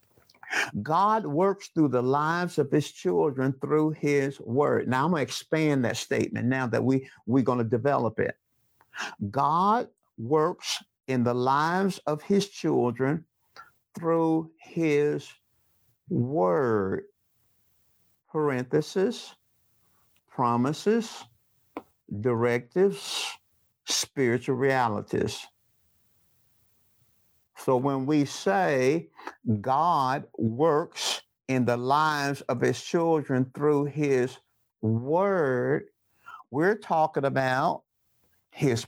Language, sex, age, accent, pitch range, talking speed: English, male, 60-79, American, 120-165 Hz, 95 wpm